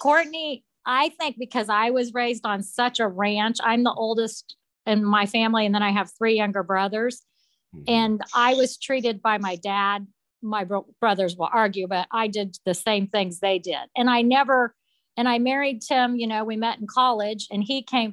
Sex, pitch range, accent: female, 205-245 Hz, American